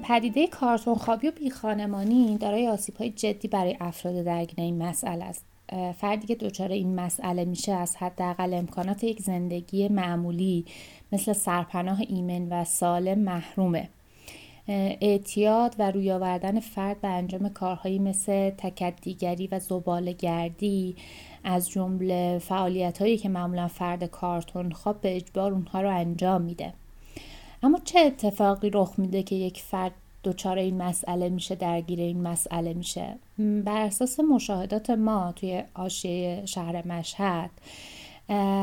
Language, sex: Persian, female